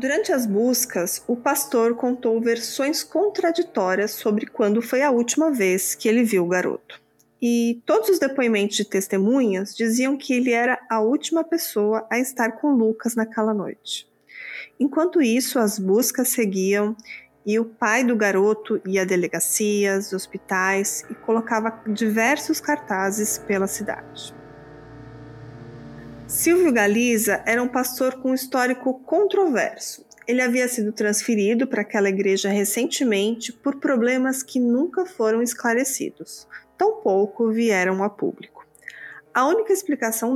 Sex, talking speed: female, 130 wpm